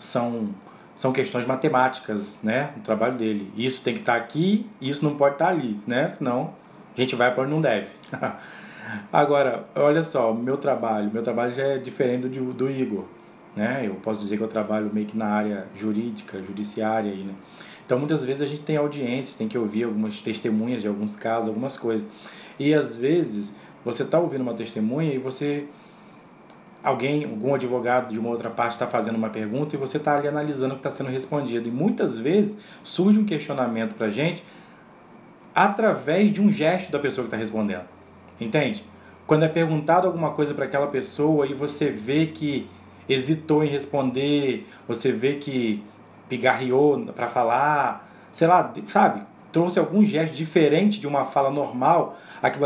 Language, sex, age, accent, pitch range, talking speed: Portuguese, male, 20-39, Brazilian, 110-150 Hz, 175 wpm